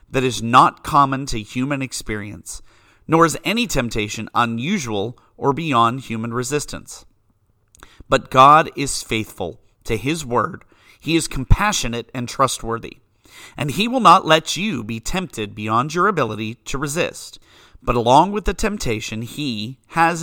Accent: American